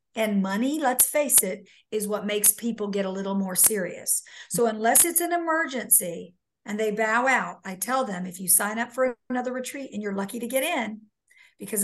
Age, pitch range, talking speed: 50-69, 200-240 Hz, 205 wpm